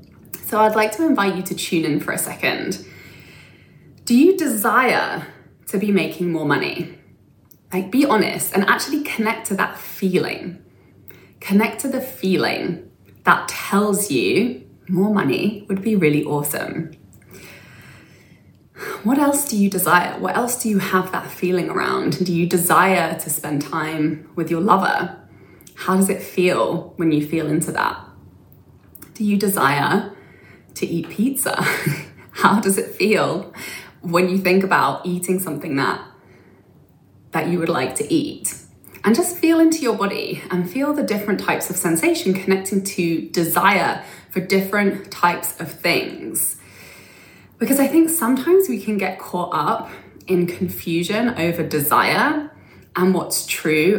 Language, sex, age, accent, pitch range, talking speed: English, female, 20-39, British, 170-215 Hz, 150 wpm